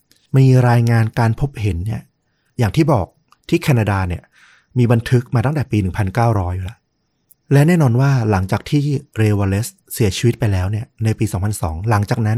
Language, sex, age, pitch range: Thai, male, 30-49, 105-130 Hz